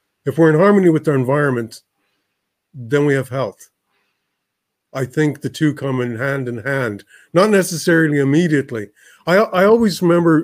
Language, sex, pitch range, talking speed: English, male, 115-150 Hz, 155 wpm